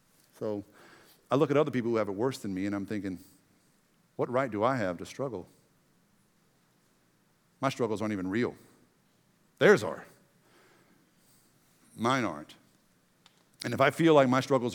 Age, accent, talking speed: 50-69, American, 155 wpm